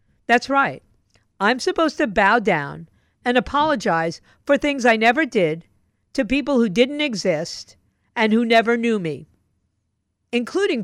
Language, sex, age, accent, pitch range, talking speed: English, female, 50-69, American, 165-250 Hz, 140 wpm